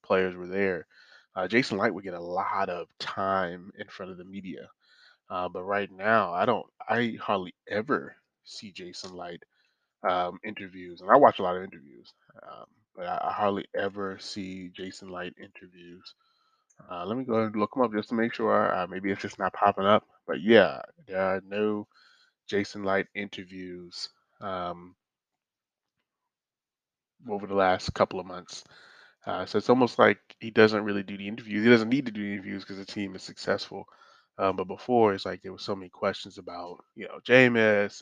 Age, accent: 20-39, American